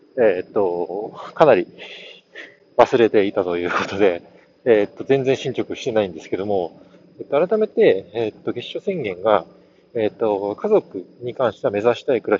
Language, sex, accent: Japanese, male, native